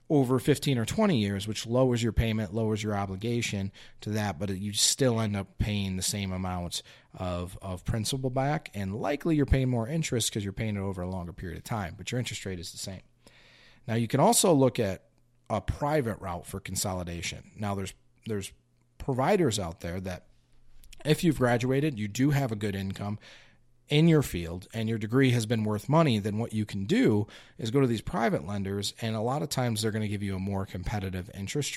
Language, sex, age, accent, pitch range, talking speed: English, male, 40-59, American, 100-125 Hz, 210 wpm